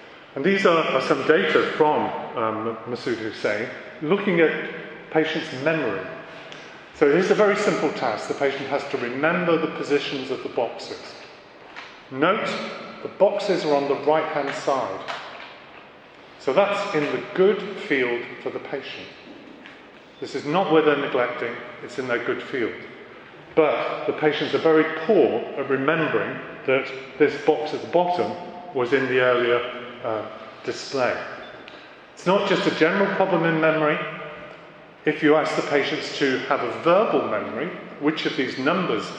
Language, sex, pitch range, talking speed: English, male, 135-165 Hz, 155 wpm